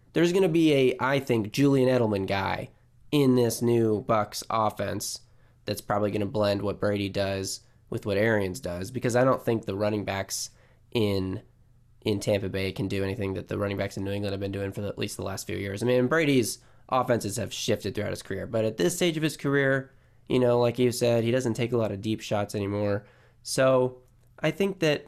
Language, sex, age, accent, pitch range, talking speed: English, male, 20-39, American, 110-130 Hz, 220 wpm